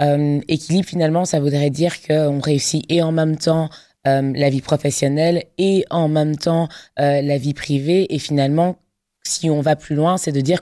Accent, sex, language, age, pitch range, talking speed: French, female, French, 20-39, 145-165 Hz, 190 wpm